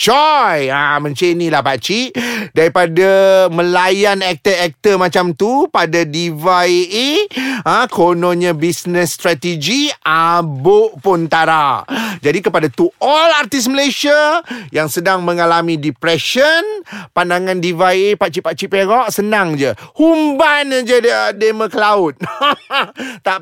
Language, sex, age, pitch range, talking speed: Malay, male, 30-49, 170-250 Hz, 110 wpm